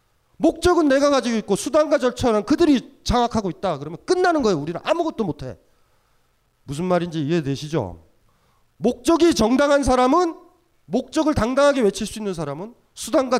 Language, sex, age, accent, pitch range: Korean, male, 30-49, native, 175-285 Hz